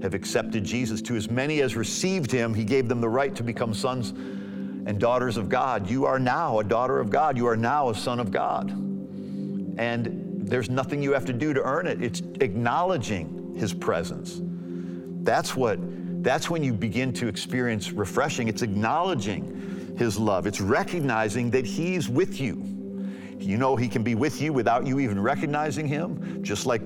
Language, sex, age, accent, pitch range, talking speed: English, male, 50-69, American, 95-145 Hz, 185 wpm